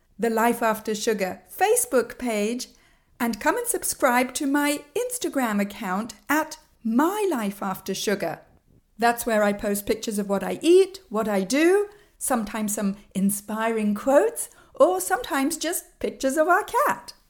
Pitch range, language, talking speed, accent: 205-315 Hz, English, 135 wpm, British